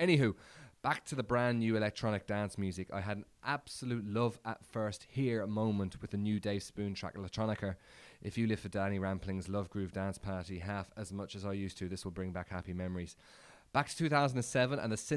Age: 20-39